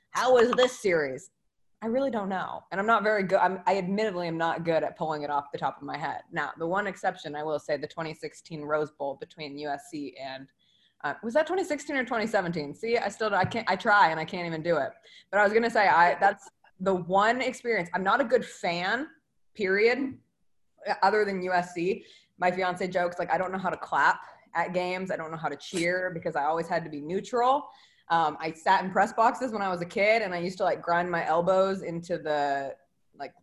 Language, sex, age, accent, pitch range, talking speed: English, female, 20-39, American, 160-205 Hz, 230 wpm